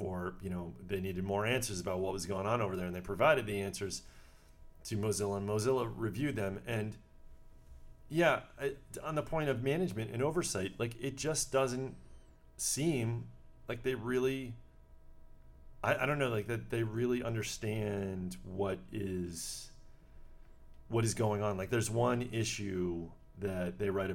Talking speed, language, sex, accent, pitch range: 160 wpm, English, male, American, 85-110 Hz